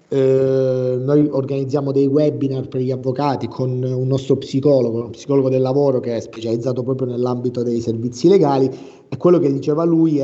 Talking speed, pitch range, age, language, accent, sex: 175 wpm, 130-155 Hz, 30-49, Italian, native, male